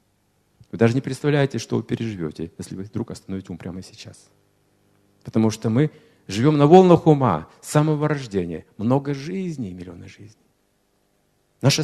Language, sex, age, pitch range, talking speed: Russian, male, 50-69, 100-155 Hz, 140 wpm